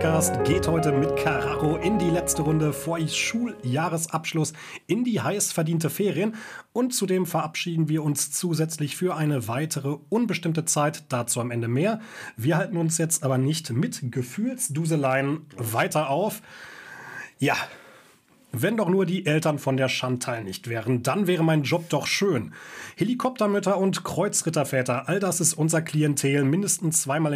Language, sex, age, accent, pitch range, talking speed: German, male, 30-49, German, 135-180 Hz, 145 wpm